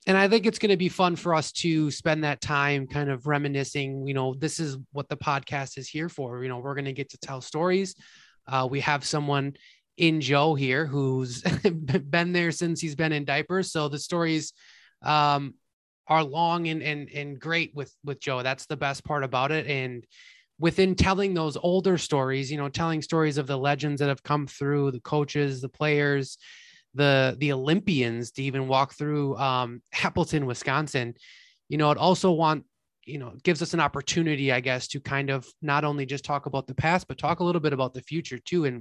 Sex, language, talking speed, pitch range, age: male, English, 210 wpm, 135-160 Hz, 20-39